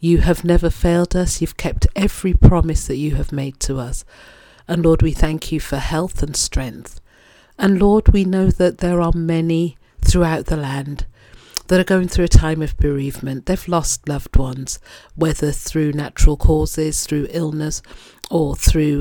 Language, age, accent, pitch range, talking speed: English, 50-69, British, 145-175 Hz, 175 wpm